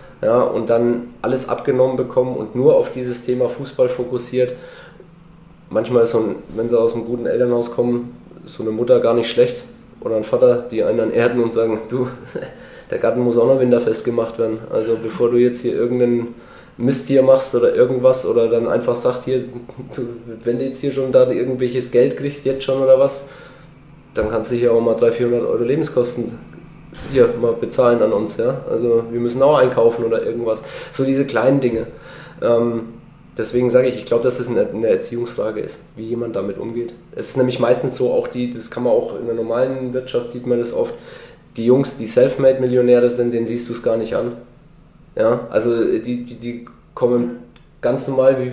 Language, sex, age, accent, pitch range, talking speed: German, male, 20-39, German, 120-135 Hz, 200 wpm